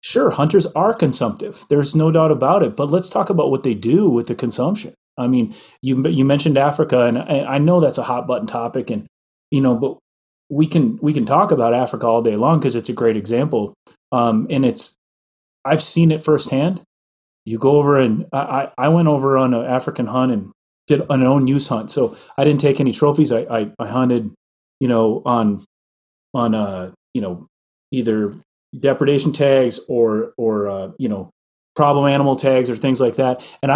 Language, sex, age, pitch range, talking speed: English, male, 30-49, 115-150 Hz, 195 wpm